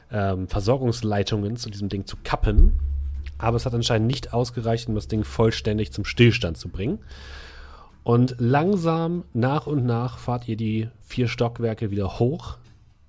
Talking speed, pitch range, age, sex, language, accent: 145 wpm, 105-125 Hz, 30-49, male, German, German